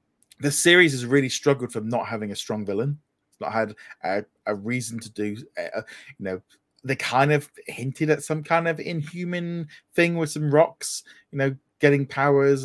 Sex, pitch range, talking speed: male, 125-155 Hz, 180 wpm